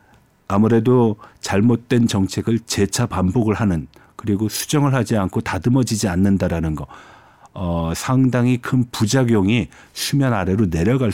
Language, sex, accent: Korean, male, native